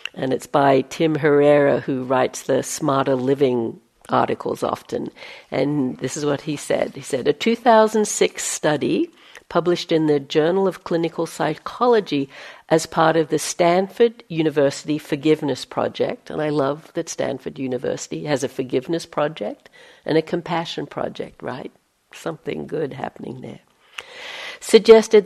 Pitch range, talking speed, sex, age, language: 150-190 Hz, 140 wpm, female, 60-79, English